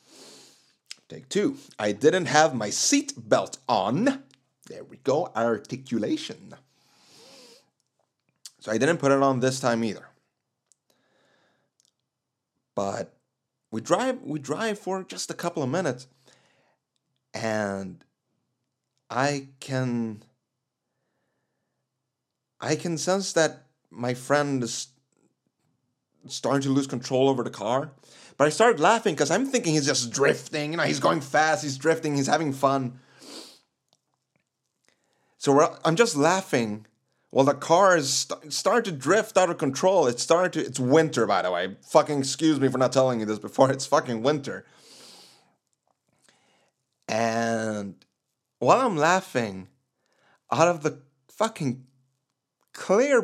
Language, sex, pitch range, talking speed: English, male, 120-155 Hz, 130 wpm